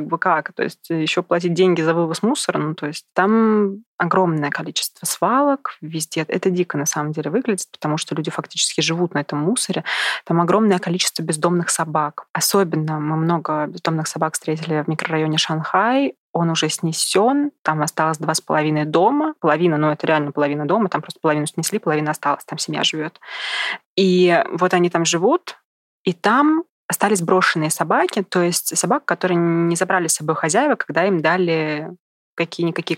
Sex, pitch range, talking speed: female, 155-185 Hz, 170 wpm